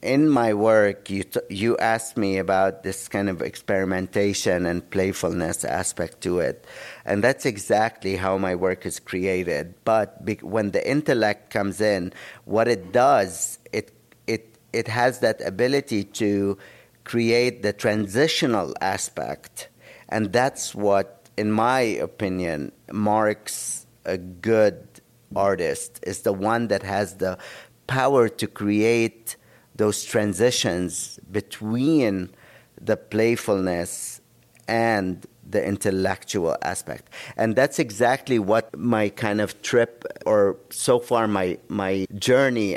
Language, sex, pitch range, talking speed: English, male, 95-115 Hz, 125 wpm